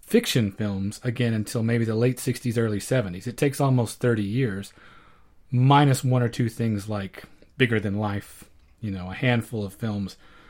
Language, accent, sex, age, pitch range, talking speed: English, American, male, 30-49, 105-130 Hz, 170 wpm